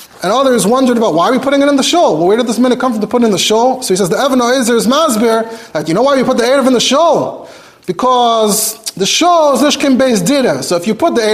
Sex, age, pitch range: male, 30-49, 230-290 Hz